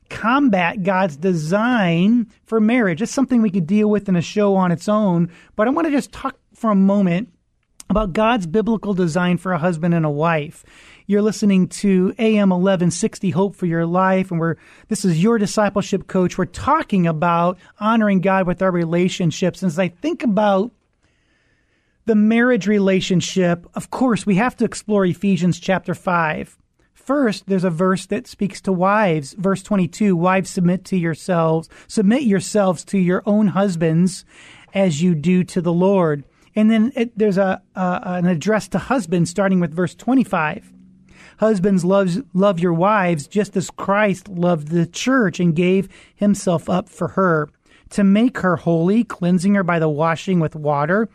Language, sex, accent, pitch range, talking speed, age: English, male, American, 175-210 Hz, 170 wpm, 30-49